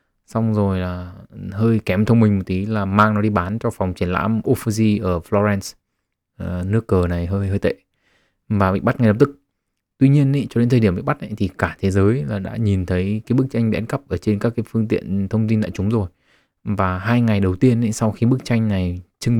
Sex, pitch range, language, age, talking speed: male, 95-110 Hz, Vietnamese, 20-39, 240 wpm